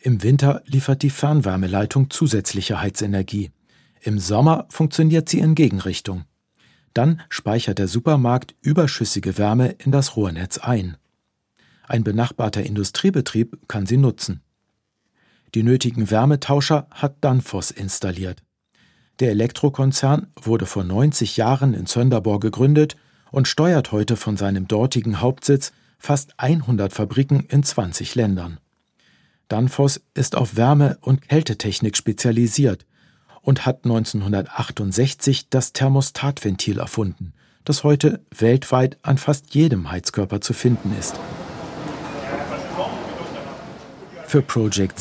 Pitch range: 105-140 Hz